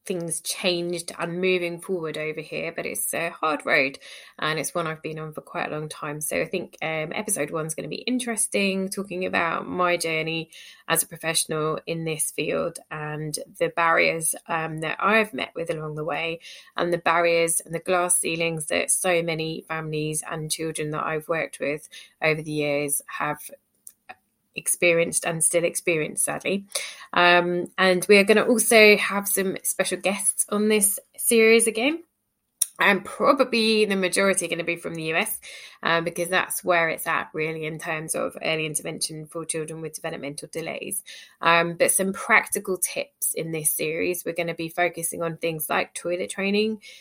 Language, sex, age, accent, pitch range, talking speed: English, female, 20-39, British, 160-185 Hz, 180 wpm